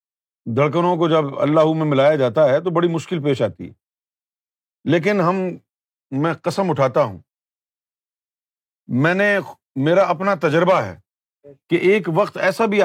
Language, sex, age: Urdu, male, 50-69